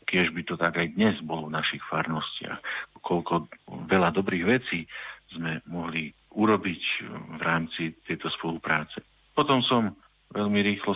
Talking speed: 135 wpm